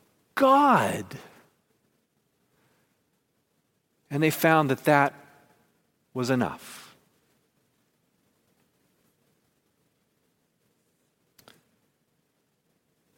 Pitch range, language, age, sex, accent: 120-145 Hz, English, 40-59, male, American